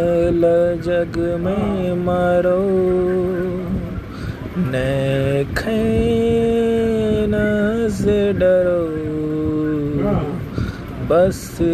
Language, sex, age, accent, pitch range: Hindi, male, 20-39, native, 150-190 Hz